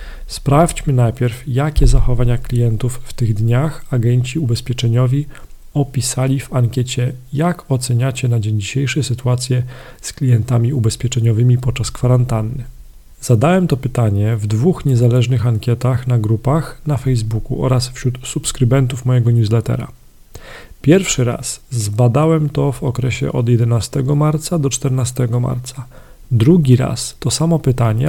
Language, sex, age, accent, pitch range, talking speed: Polish, male, 40-59, native, 120-135 Hz, 120 wpm